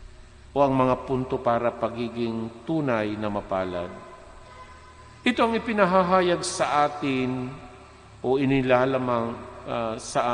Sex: male